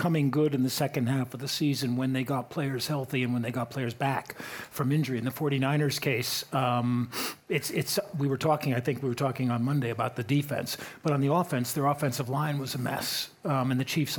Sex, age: male, 50-69